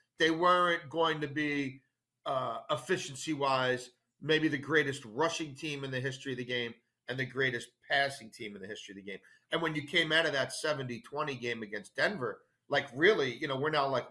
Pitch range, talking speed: 130-170 Hz, 205 wpm